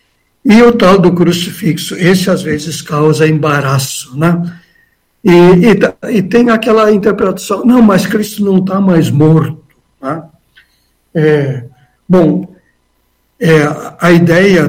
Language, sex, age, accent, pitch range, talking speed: Portuguese, male, 60-79, Brazilian, 150-195 Hz, 110 wpm